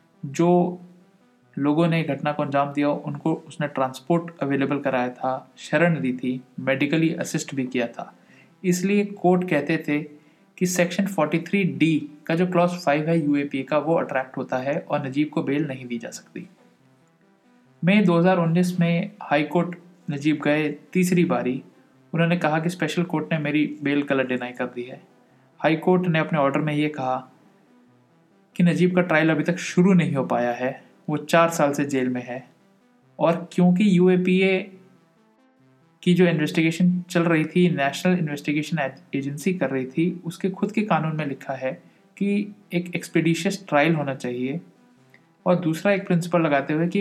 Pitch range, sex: 140-180 Hz, male